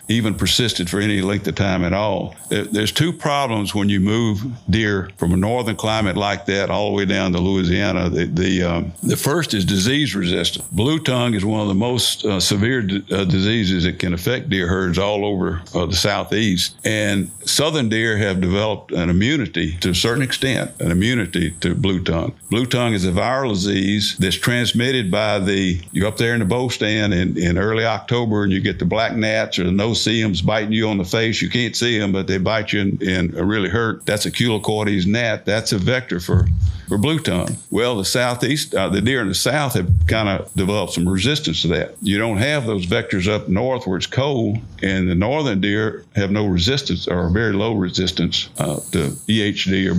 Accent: American